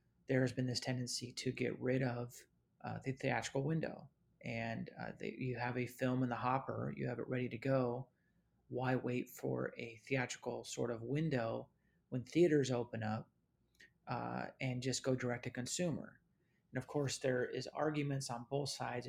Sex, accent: male, American